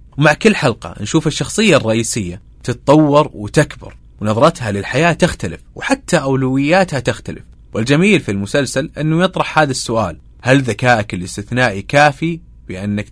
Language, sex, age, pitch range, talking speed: Arabic, male, 30-49, 105-150 Hz, 120 wpm